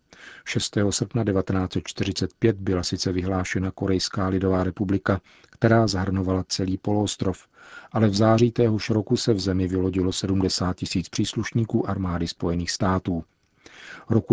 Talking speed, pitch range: 120 wpm, 95-105 Hz